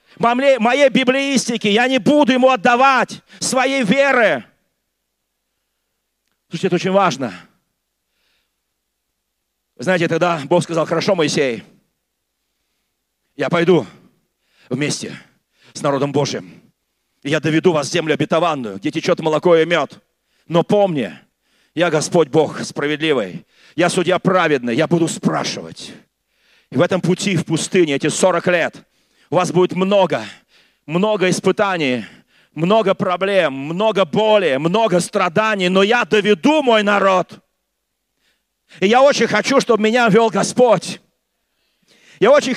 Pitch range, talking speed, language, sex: 170-240 Hz, 120 wpm, Russian, male